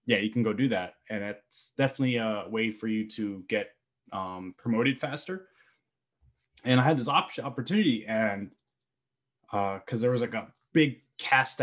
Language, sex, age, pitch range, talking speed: English, male, 20-39, 110-135 Hz, 170 wpm